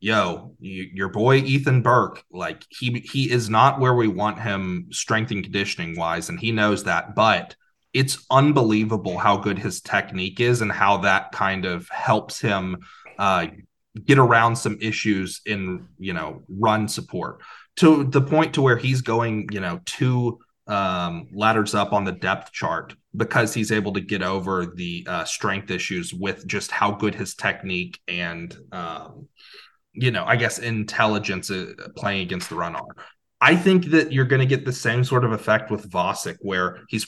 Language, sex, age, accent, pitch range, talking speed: English, male, 30-49, American, 100-130 Hz, 175 wpm